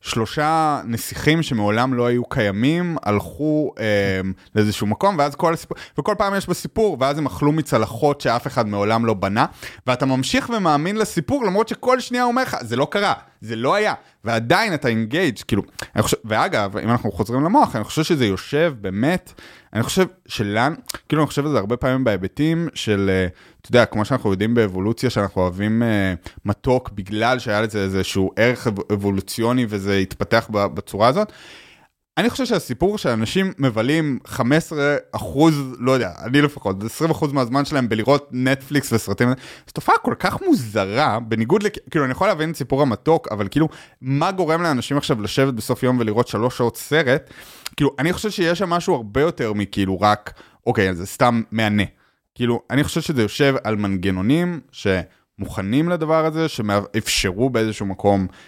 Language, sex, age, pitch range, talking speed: Hebrew, male, 20-39, 105-150 Hz, 165 wpm